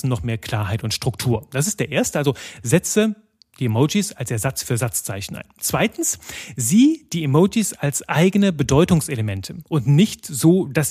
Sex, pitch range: male, 125-170 Hz